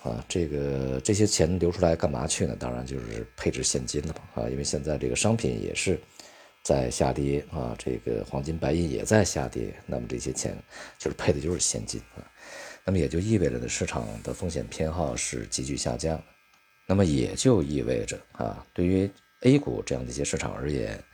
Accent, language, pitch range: native, Chinese, 70-95 Hz